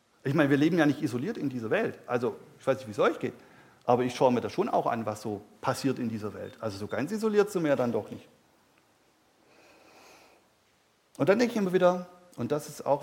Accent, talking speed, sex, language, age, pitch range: German, 235 wpm, male, German, 40-59, 135-170 Hz